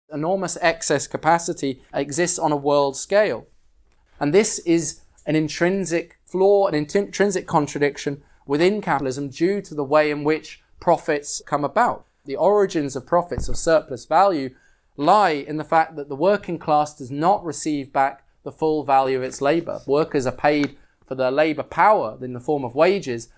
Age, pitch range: 20-39, 135-165 Hz